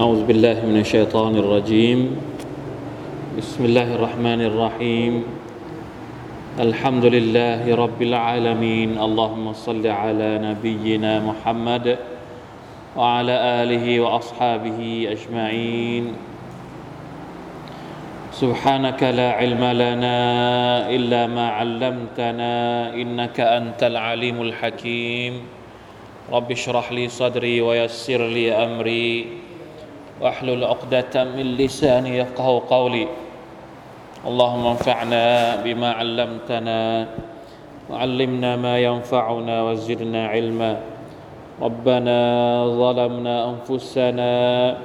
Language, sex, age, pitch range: Thai, male, 20-39, 115-125 Hz